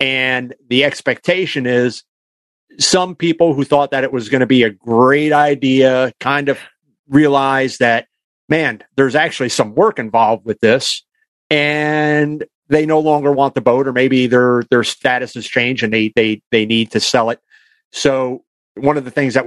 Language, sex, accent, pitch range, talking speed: English, male, American, 125-150 Hz, 175 wpm